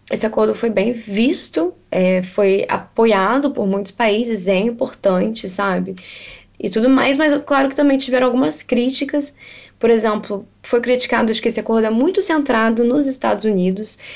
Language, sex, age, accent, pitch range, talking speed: Portuguese, female, 10-29, Brazilian, 210-265 Hz, 160 wpm